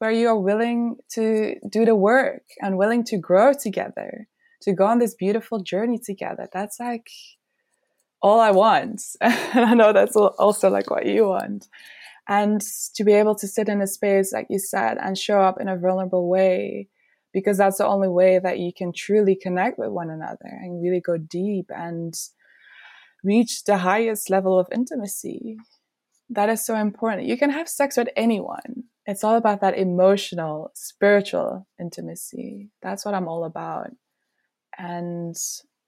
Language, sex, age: English, female, 20-39